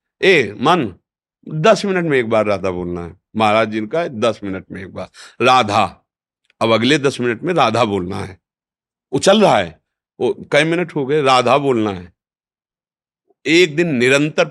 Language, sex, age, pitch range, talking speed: Hindi, male, 50-69, 115-170 Hz, 175 wpm